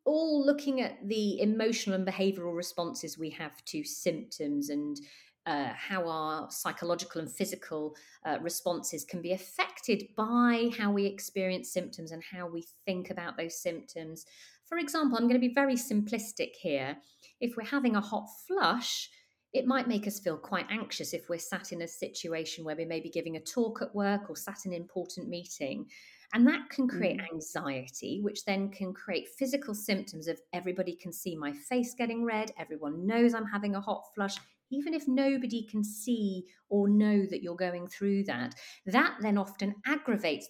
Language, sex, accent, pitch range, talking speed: English, female, British, 175-230 Hz, 180 wpm